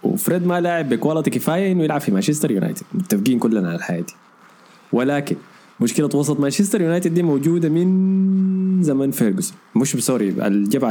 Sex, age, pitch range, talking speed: male, 20-39, 115-160 Hz, 155 wpm